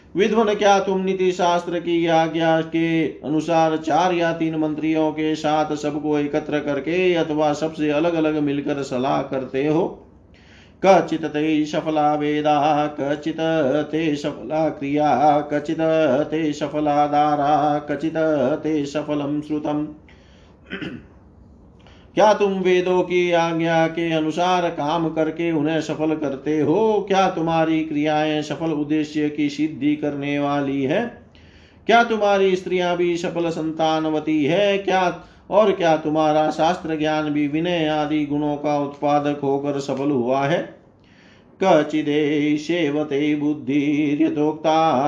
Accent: native